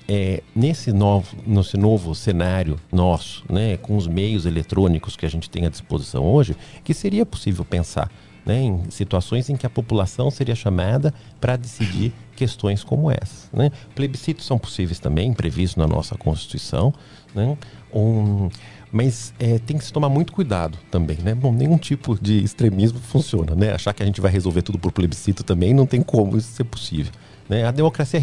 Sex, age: male, 50-69